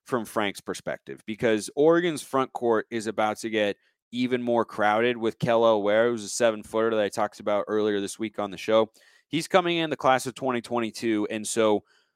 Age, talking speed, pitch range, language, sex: 30-49, 200 wpm, 105-125 Hz, English, male